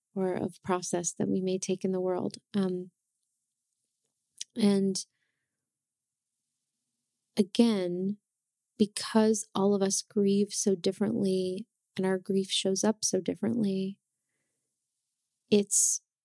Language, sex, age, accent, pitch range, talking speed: English, female, 30-49, American, 190-220 Hz, 105 wpm